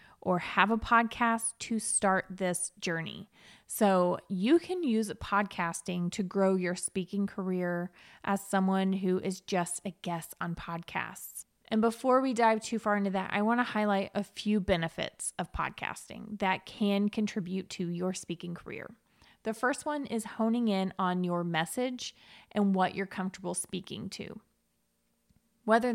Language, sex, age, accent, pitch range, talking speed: English, female, 20-39, American, 185-225 Hz, 155 wpm